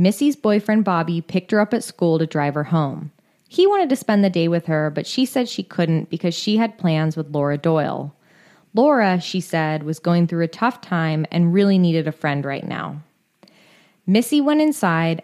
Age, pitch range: 20-39, 160-210 Hz